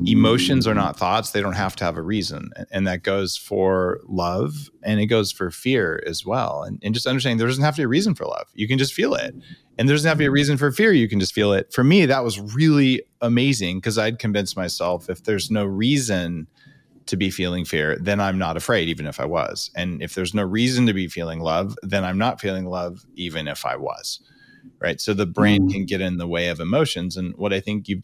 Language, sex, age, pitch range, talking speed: English, male, 30-49, 90-115 Hz, 255 wpm